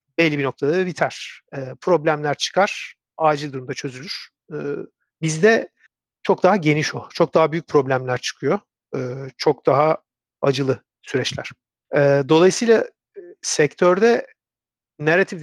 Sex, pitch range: male, 135-165 Hz